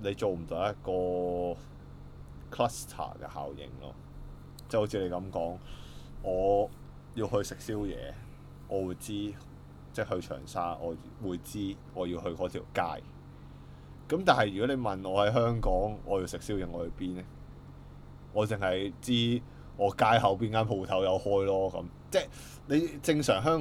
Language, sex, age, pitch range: Chinese, male, 20-39, 90-120 Hz